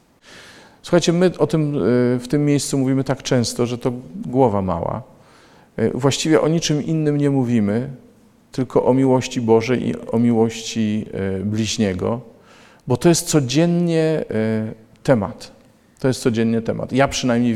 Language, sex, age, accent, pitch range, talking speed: Polish, male, 40-59, native, 115-145 Hz, 135 wpm